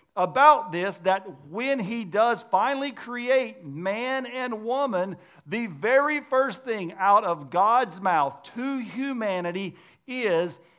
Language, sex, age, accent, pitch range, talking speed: English, male, 50-69, American, 165-230 Hz, 120 wpm